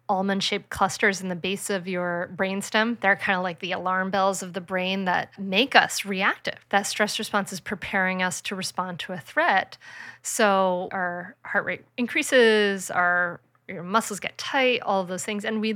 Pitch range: 185-225 Hz